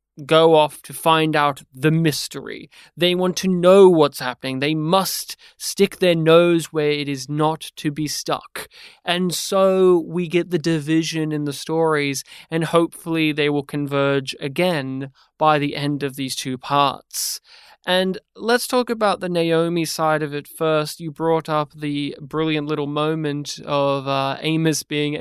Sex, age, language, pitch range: male, 20-39, English, 145-165 Hz